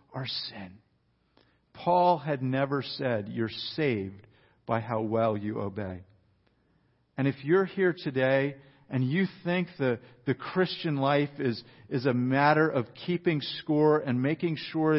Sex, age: male, 50-69